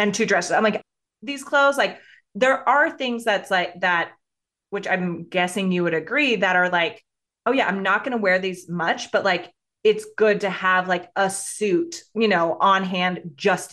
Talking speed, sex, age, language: 200 wpm, female, 20-39, English